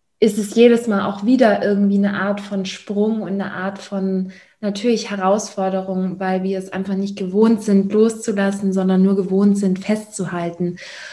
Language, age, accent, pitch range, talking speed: German, 20-39, German, 195-220 Hz, 160 wpm